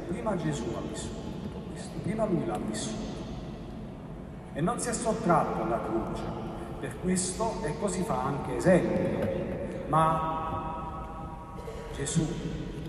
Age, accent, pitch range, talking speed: 40-59, native, 155-185 Hz, 115 wpm